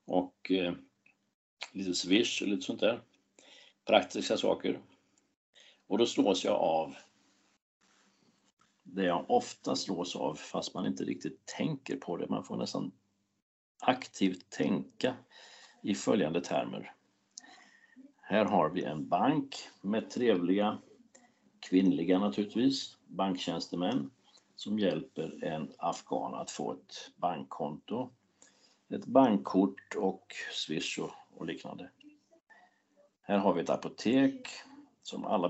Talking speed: 110 wpm